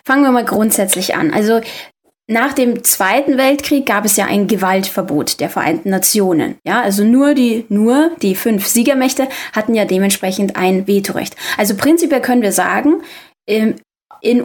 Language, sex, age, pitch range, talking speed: German, female, 20-39, 195-255 Hz, 155 wpm